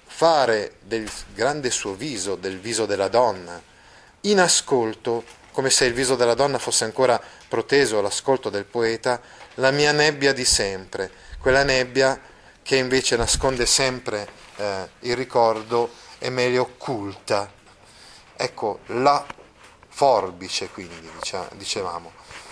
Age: 30-49